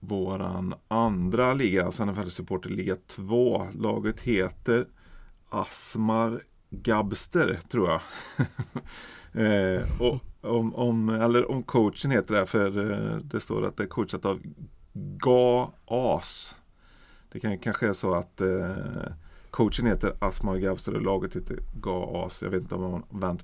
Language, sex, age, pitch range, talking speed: Swedish, male, 30-49, 95-110 Hz, 140 wpm